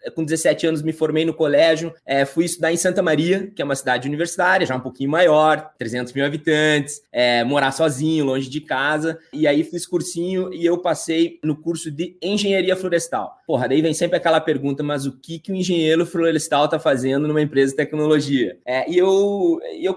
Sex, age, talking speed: male, 20-39, 190 wpm